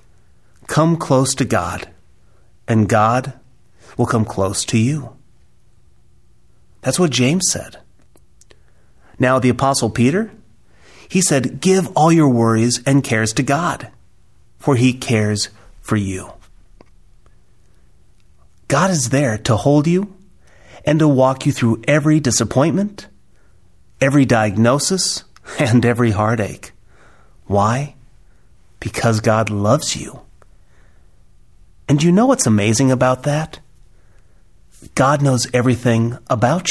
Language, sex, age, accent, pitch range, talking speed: English, male, 30-49, American, 105-145 Hz, 110 wpm